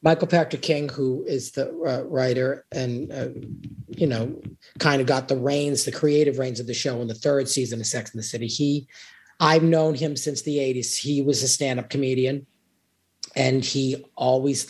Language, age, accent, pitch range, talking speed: English, 40-59, American, 130-160 Hz, 195 wpm